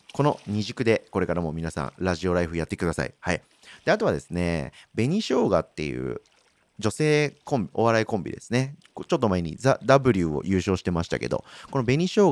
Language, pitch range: Japanese, 85-130 Hz